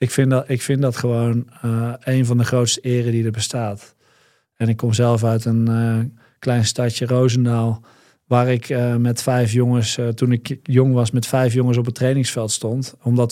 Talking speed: 205 wpm